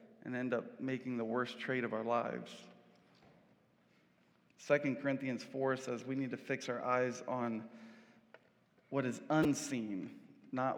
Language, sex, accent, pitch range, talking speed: English, male, American, 125-150 Hz, 140 wpm